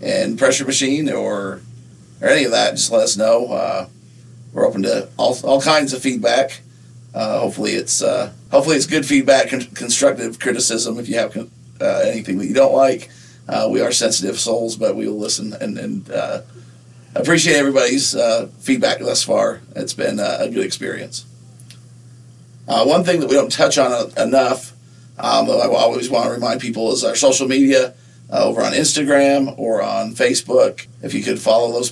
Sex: male